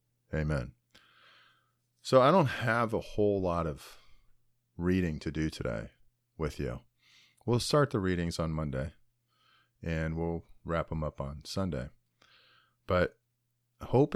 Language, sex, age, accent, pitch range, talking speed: English, male, 40-59, American, 80-120 Hz, 125 wpm